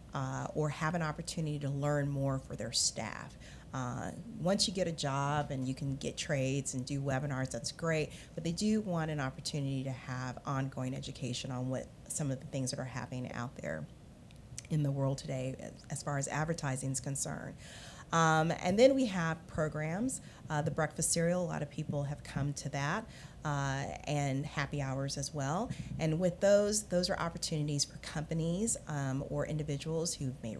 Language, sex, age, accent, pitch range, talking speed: English, female, 30-49, American, 135-165 Hz, 190 wpm